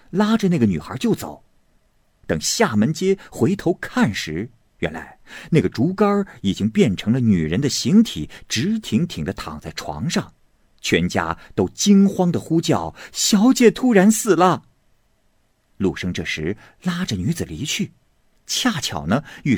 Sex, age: male, 50-69